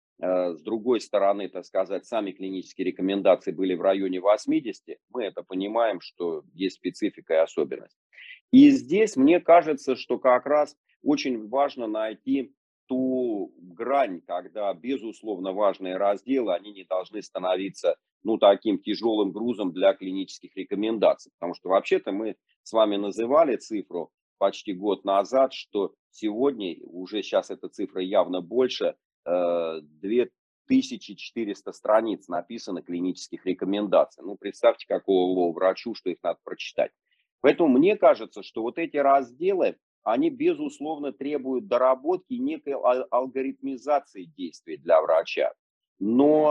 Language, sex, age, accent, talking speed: Russian, male, 40-59, native, 125 wpm